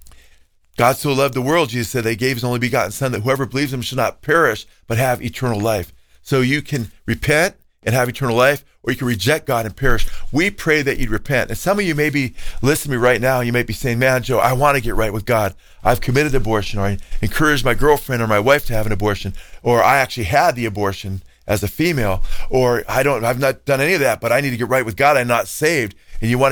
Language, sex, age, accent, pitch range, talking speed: English, male, 40-59, American, 105-130 Hz, 260 wpm